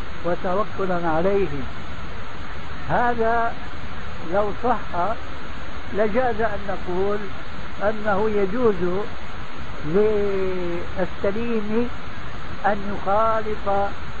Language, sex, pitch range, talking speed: Arabic, male, 180-215 Hz, 55 wpm